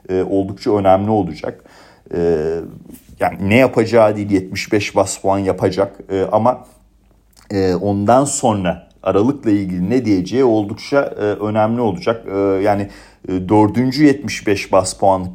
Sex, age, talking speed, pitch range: male, 40-59, 100 wpm, 95-115 Hz